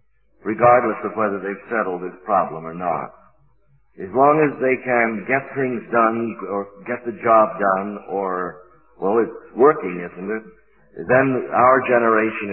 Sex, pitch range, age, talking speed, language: male, 105-125 Hz, 50-69, 150 wpm, English